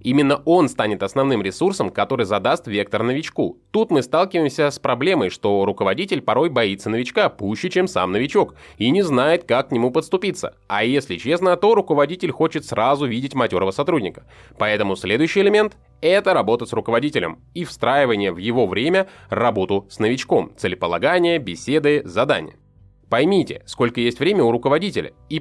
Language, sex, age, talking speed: Russian, male, 20-39, 155 wpm